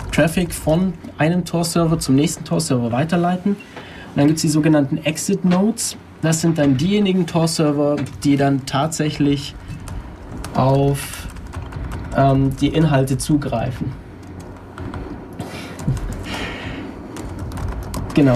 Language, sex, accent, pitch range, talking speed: German, male, German, 130-165 Hz, 95 wpm